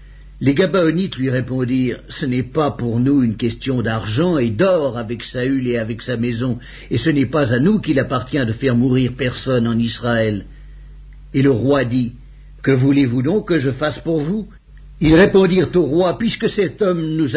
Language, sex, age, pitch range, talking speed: English, male, 60-79, 130-160 Hz, 185 wpm